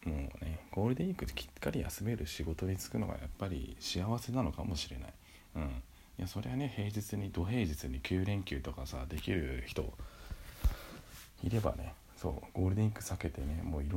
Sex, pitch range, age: male, 80-100 Hz, 40-59